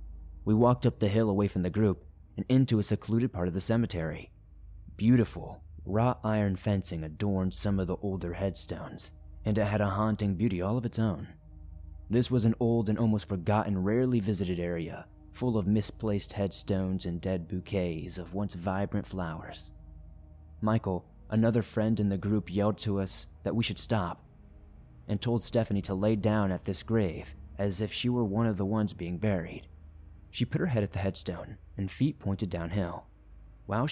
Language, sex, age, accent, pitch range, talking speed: English, male, 20-39, American, 85-110 Hz, 180 wpm